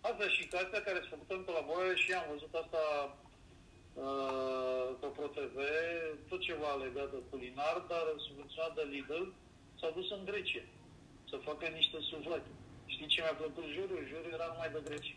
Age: 40-59